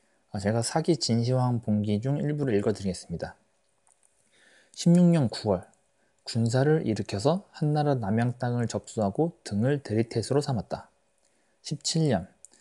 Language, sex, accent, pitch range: Korean, male, native, 105-150 Hz